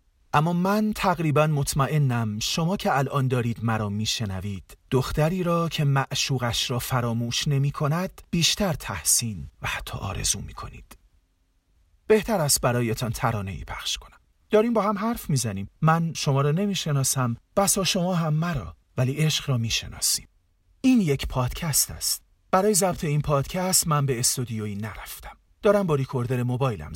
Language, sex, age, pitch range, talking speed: Persian, male, 40-59, 105-165 Hz, 140 wpm